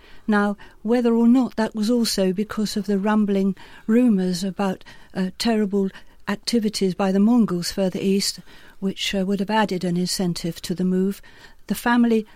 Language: English